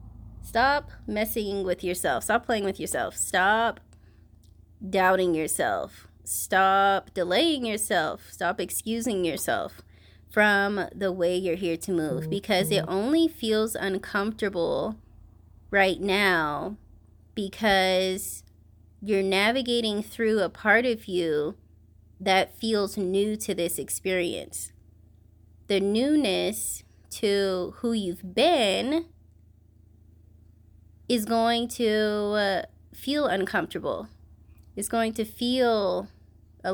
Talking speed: 100 wpm